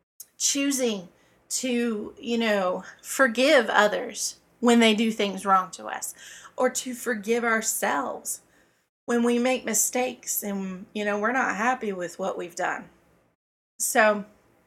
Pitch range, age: 205-240 Hz, 20-39